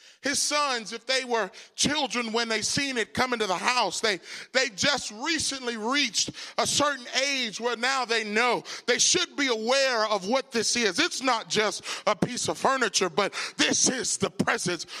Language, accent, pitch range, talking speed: English, American, 210-275 Hz, 185 wpm